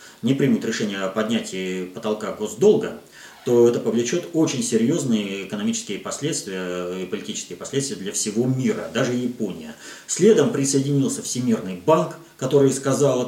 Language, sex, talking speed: Russian, male, 130 wpm